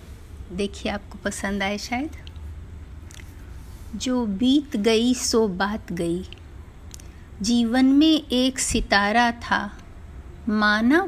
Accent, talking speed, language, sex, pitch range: native, 90 wpm, Hindi, female, 205-270 Hz